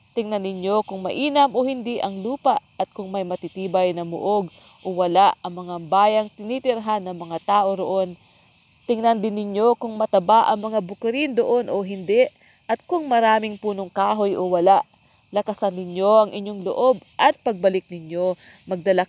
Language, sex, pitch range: English, female, 185-225 Hz